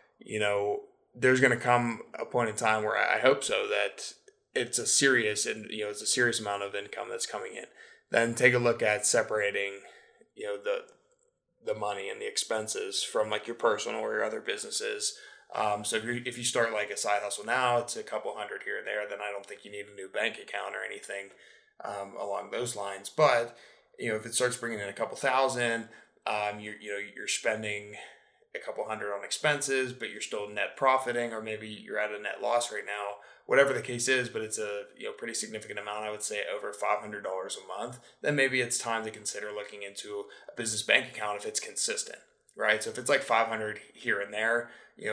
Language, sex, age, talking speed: English, male, 20-39, 220 wpm